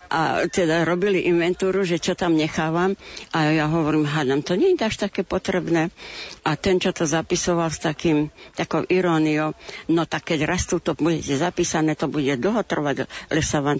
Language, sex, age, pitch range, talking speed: Slovak, female, 60-79, 155-185 Hz, 175 wpm